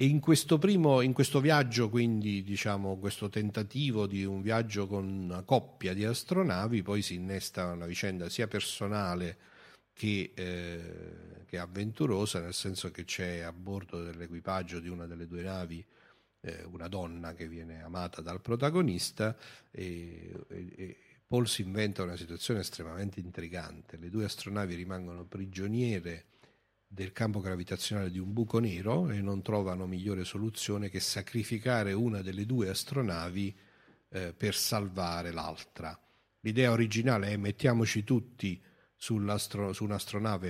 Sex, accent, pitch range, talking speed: male, native, 90-105 Hz, 140 wpm